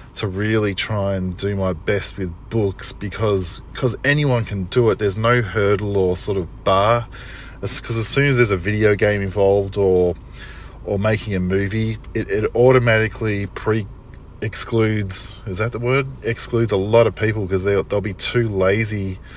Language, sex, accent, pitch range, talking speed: English, male, Australian, 95-115 Hz, 170 wpm